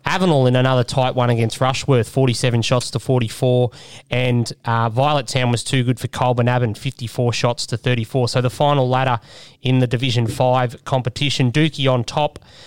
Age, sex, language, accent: 20-39, male, English, Australian